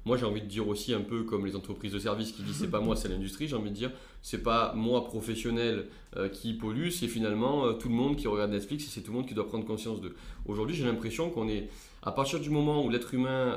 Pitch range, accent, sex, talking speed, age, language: 105-130 Hz, French, male, 275 wpm, 20-39, French